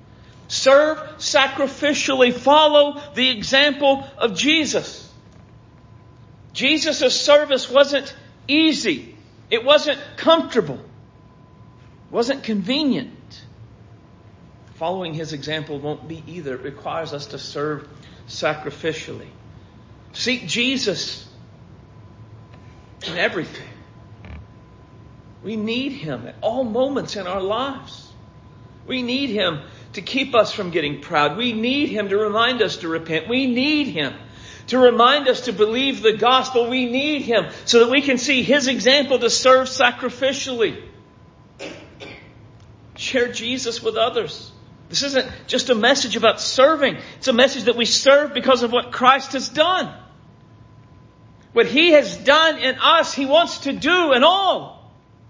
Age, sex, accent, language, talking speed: 50-69, male, American, English, 125 wpm